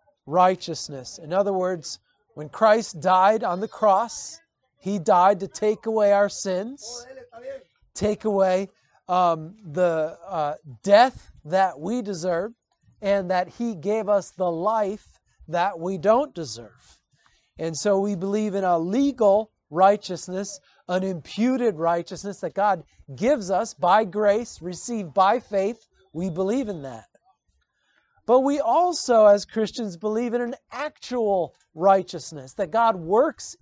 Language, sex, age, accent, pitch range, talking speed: English, male, 40-59, American, 180-225 Hz, 130 wpm